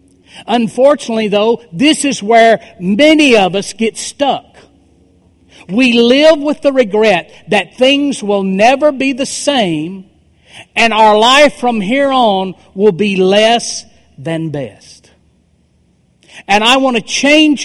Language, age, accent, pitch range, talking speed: English, 50-69, American, 195-260 Hz, 130 wpm